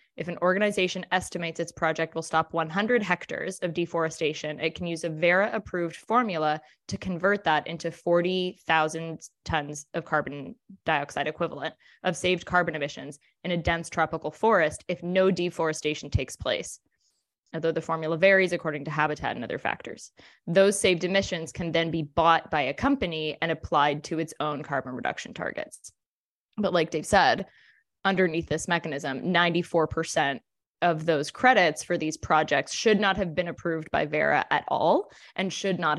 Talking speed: 160 wpm